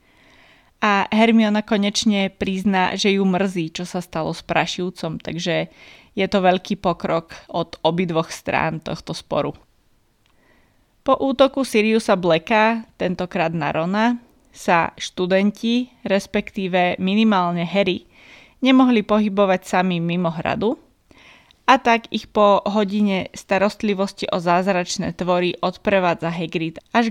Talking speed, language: 110 wpm, Slovak